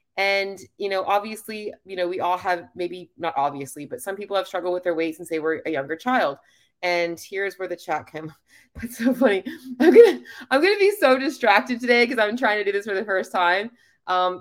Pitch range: 165-210 Hz